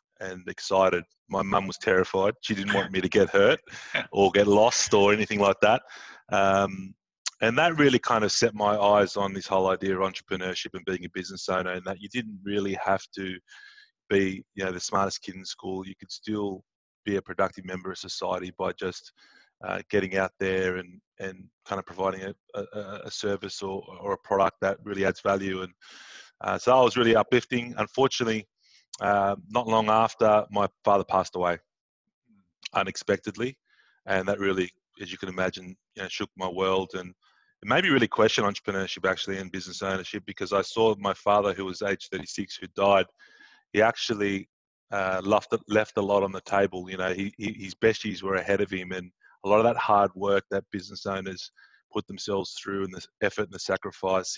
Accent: Australian